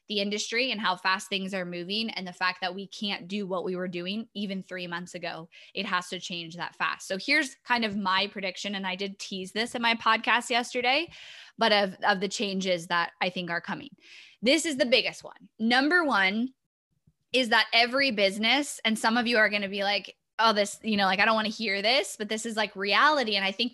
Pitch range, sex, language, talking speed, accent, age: 195-245 Hz, female, English, 235 wpm, American, 10-29